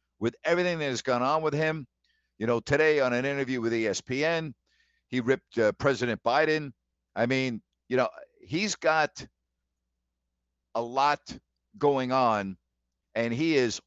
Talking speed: 145 wpm